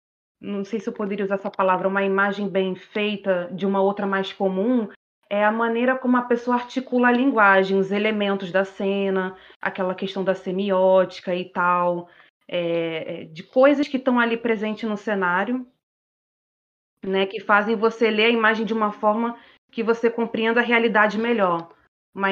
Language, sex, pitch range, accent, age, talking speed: Portuguese, female, 195-230 Hz, Brazilian, 20-39, 165 wpm